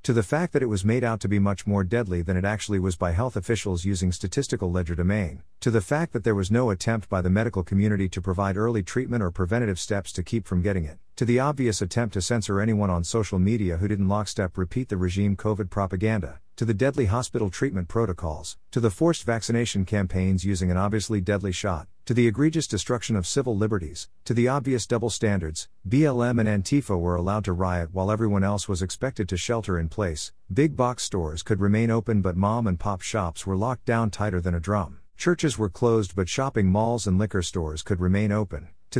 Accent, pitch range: American, 90-115 Hz